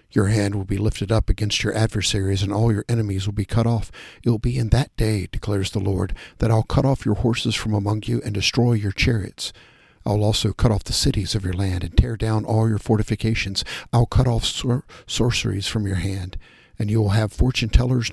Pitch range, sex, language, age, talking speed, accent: 100-115 Hz, male, English, 60-79, 220 wpm, American